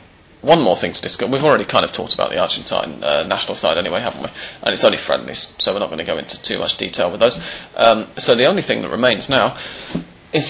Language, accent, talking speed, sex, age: English, British, 250 wpm, male, 30-49